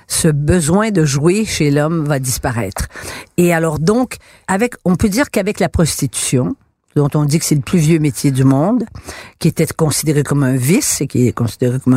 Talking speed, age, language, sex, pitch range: 200 wpm, 50-69, French, female, 140-180 Hz